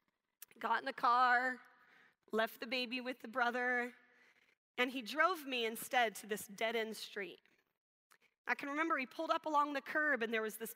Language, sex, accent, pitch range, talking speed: English, female, American, 225-275 Hz, 180 wpm